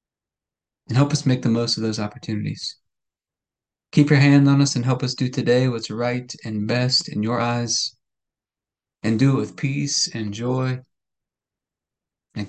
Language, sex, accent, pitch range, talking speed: English, male, American, 115-145 Hz, 165 wpm